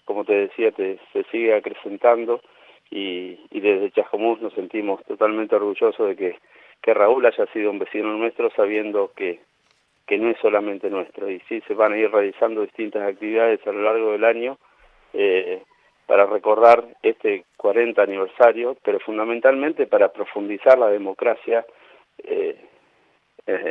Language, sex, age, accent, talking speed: Spanish, male, 40-59, Argentinian, 145 wpm